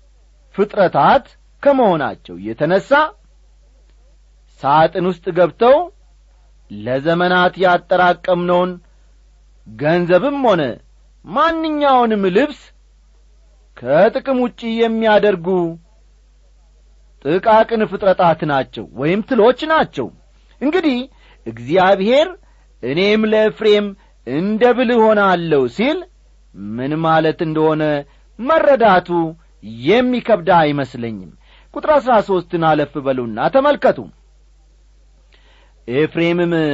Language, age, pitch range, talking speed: Amharic, 40-59, 140-220 Hz, 65 wpm